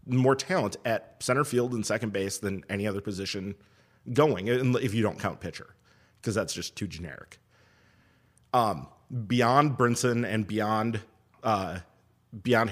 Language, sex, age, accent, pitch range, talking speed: English, male, 30-49, American, 105-125 Hz, 140 wpm